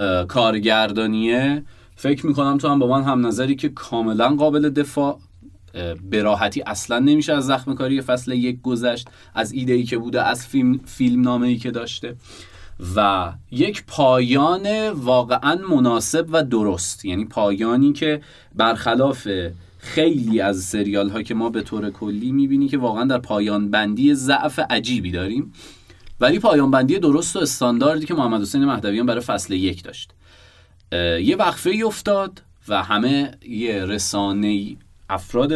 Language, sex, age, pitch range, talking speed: Persian, male, 30-49, 105-140 Hz, 140 wpm